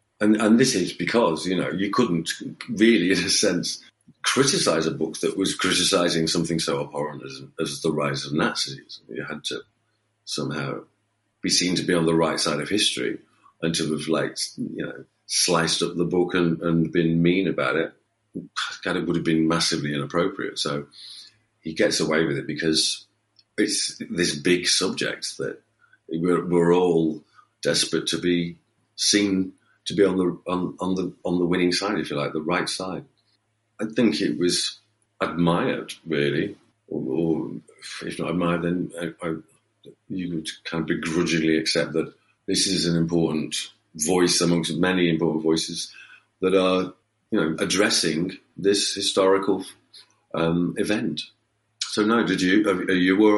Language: English